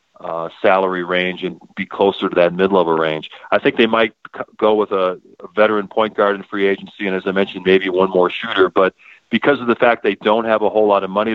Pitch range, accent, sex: 95-110 Hz, American, male